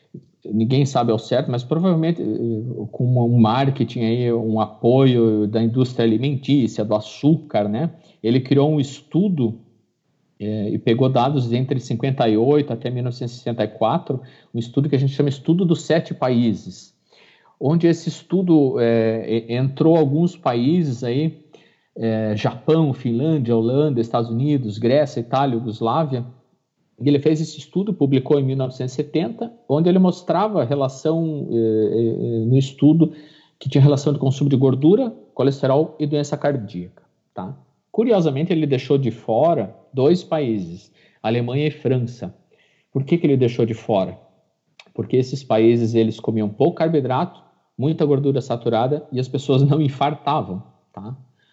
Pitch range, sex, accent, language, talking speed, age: 115-150 Hz, male, Brazilian, Portuguese, 135 wpm, 50-69